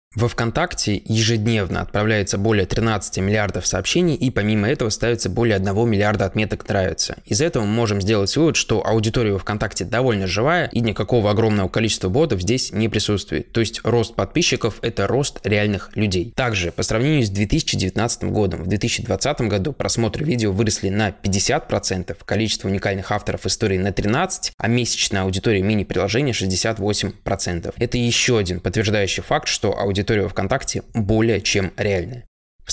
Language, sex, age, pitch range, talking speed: Russian, male, 20-39, 100-120 Hz, 150 wpm